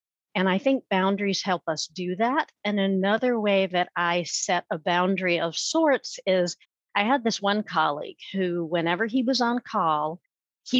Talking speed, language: 170 wpm, English